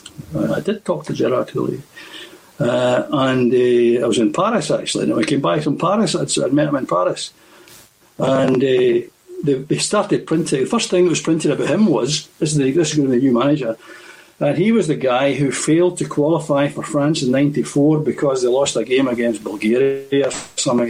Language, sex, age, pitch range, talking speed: English, male, 60-79, 125-180 Hz, 205 wpm